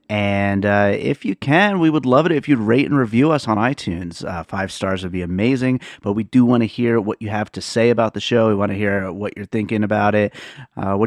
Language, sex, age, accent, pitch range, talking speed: English, male, 30-49, American, 100-125 Hz, 260 wpm